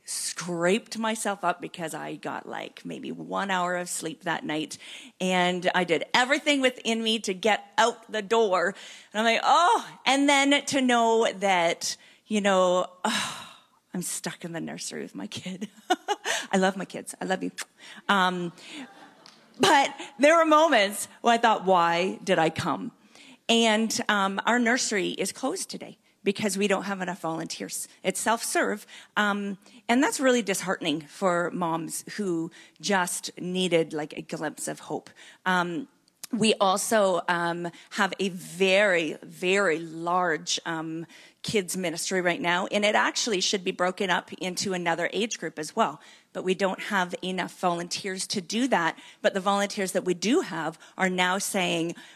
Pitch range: 180-220 Hz